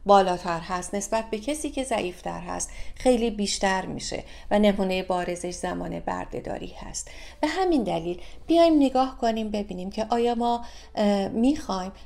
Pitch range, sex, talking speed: 190-250 Hz, female, 140 wpm